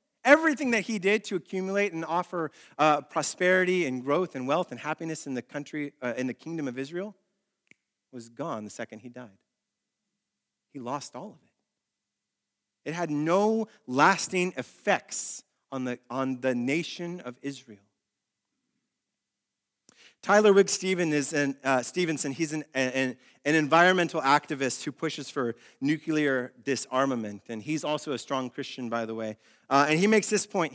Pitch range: 130-200 Hz